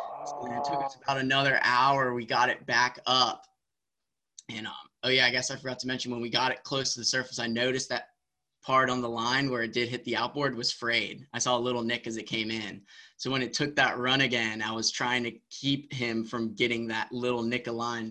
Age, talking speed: 20-39, 245 wpm